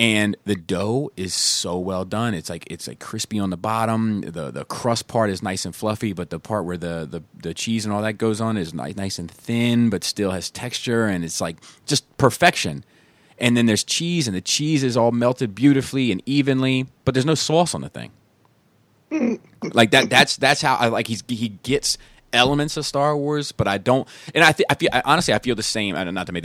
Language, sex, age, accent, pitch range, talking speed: English, male, 30-49, American, 90-120 Hz, 220 wpm